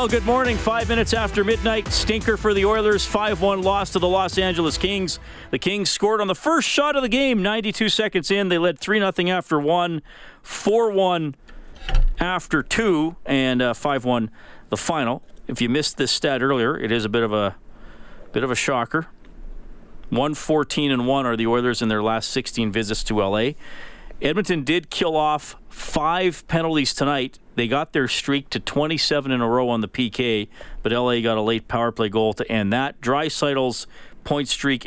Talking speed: 185 wpm